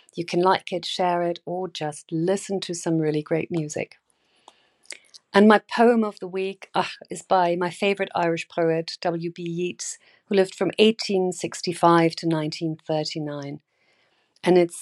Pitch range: 165-195 Hz